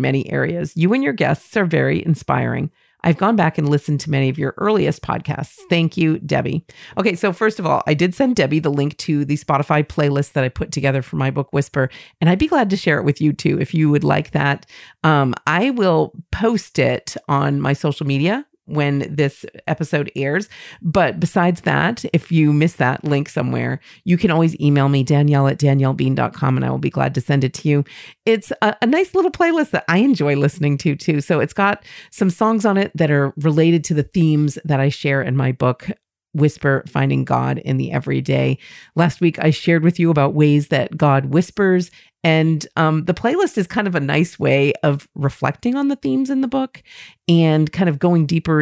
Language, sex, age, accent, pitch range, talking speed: English, female, 40-59, American, 140-180 Hz, 210 wpm